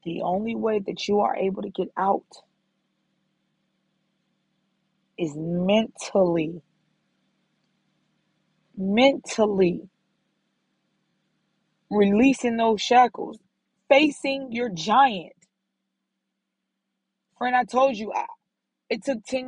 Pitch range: 195-260 Hz